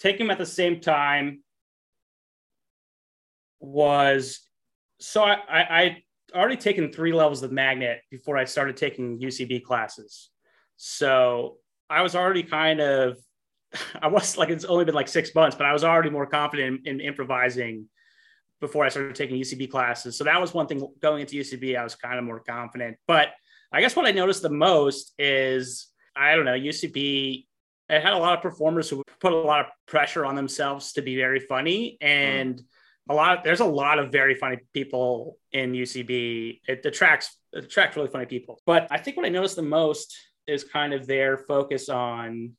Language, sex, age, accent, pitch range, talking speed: English, male, 30-49, American, 125-155 Hz, 185 wpm